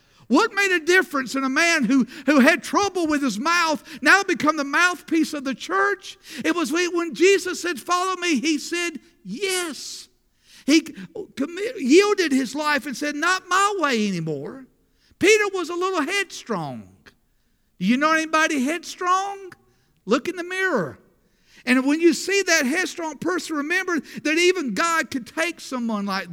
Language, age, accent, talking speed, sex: English, 50-69, American, 160 wpm, male